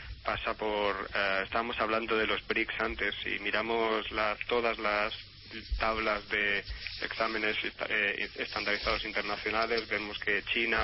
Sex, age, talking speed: male, 20-39, 120 wpm